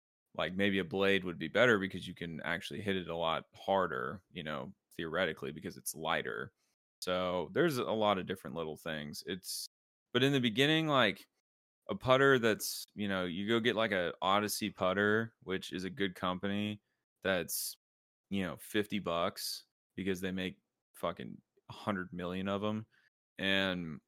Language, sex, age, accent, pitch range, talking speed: English, male, 20-39, American, 90-105 Hz, 165 wpm